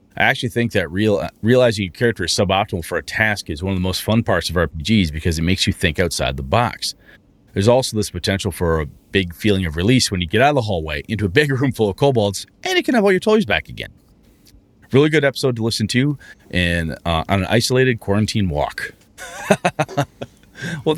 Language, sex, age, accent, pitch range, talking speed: English, male, 30-49, American, 90-130 Hz, 215 wpm